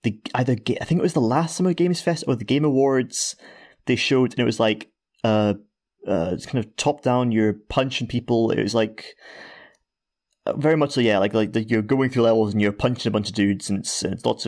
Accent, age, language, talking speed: British, 20-39, English, 250 wpm